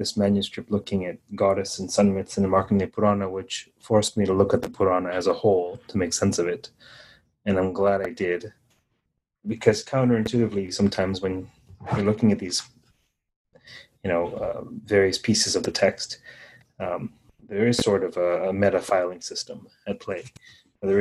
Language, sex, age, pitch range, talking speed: English, male, 30-49, 95-110 Hz, 180 wpm